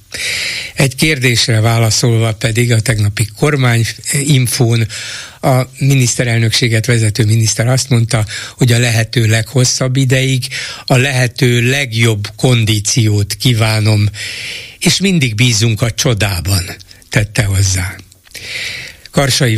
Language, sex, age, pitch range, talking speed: Hungarian, male, 60-79, 110-130 Hz, 95 wpm